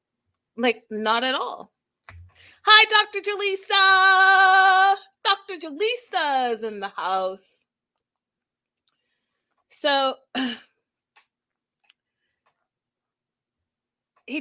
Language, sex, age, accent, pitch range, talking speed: English, female, 30-49, American, 195-275 Hz, 60 wpm